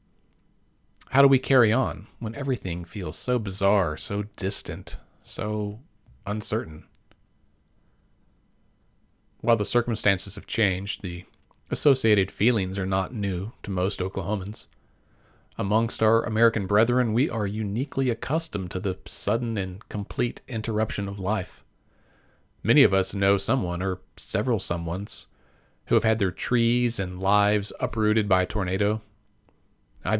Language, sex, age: English, male, 40-59